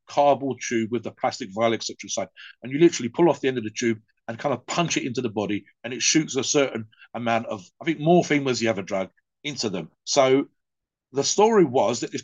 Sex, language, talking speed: male, English, 230 wpm